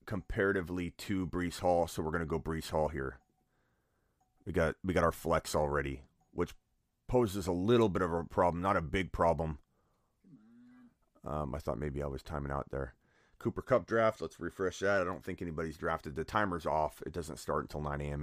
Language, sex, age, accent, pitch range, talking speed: English, male, 30-49, American, 80-95 Hz, 195 wpm